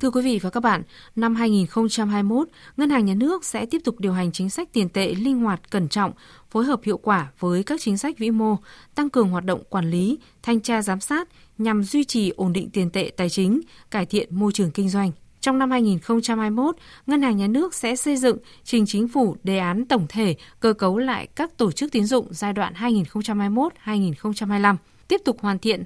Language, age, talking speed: Vietnamese, 20-39, 215 wpm